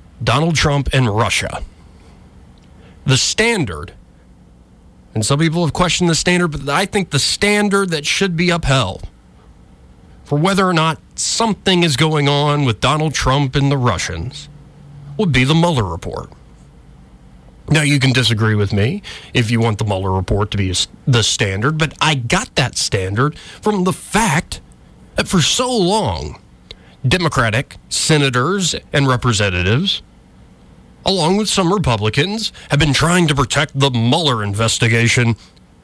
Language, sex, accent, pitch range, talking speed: English, male, American, 100-155 Hz, 140 wpm